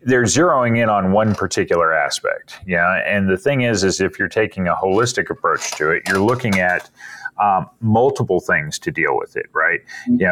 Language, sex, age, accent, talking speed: English, male, 30-49, American, 190 wpm